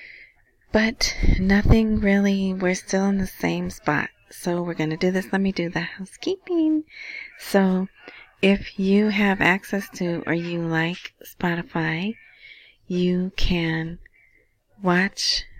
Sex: female